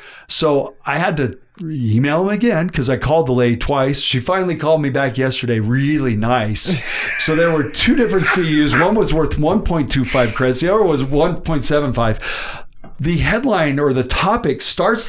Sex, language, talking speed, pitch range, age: male, English, 165 wpm, 140-195 Hz, 40-59